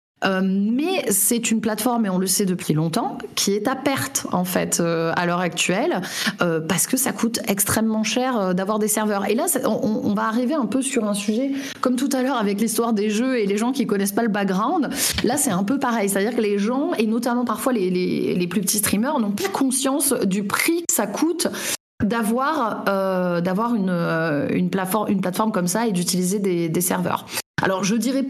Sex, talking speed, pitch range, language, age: female, 230 wpm, 190-240 Hz, French, 30-49